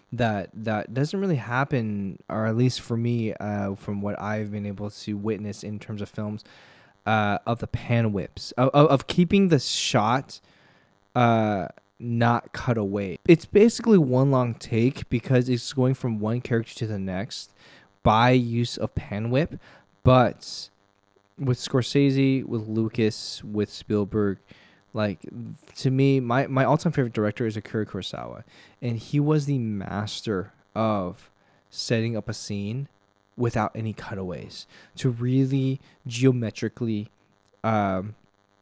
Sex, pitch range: male, 100-130 Hz